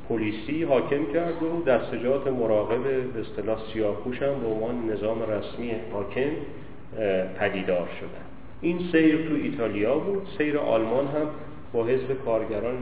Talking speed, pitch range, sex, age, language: 120 wpm, 110-140 Hz, male, 40-59, Persian